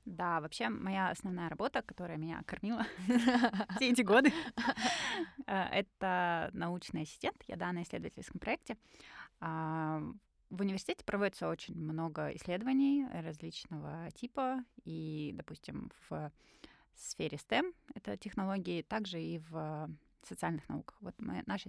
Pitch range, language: 160-225 Hz, Russian